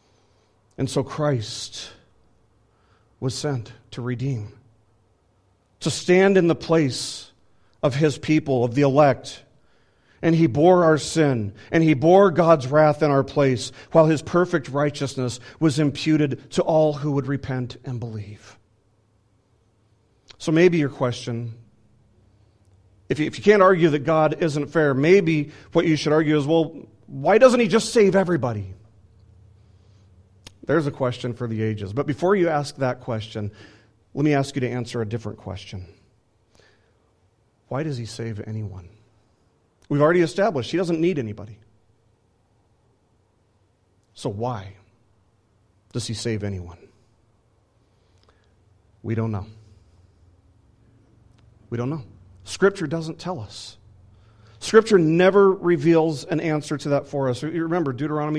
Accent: American